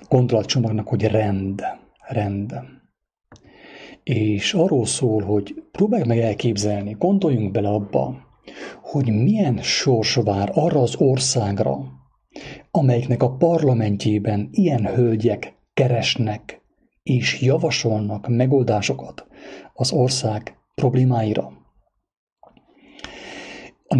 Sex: male